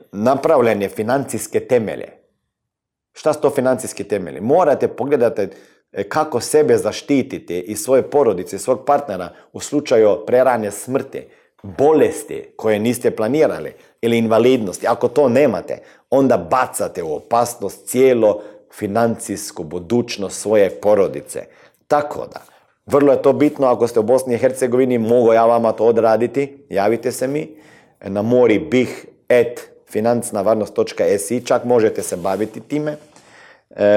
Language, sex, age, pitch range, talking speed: Croatian, male, 40-59, 110-155 Hz, 120 wpm